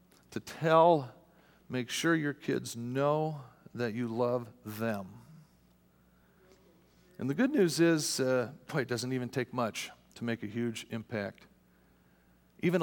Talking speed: 135 wpm